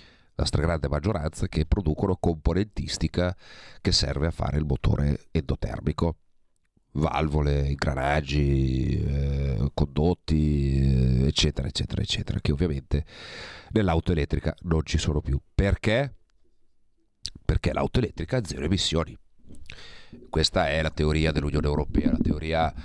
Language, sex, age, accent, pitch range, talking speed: Italian, male, 40-59, native, 75-90 Hz, 115 wpm